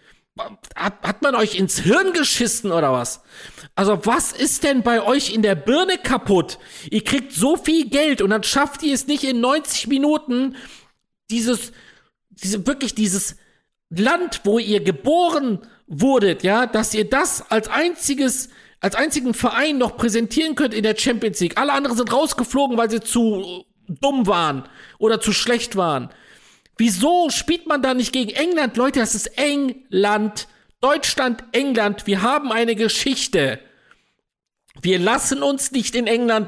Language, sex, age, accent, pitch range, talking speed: German, male, 50-69, German, 215-275 Hz, 155 wpm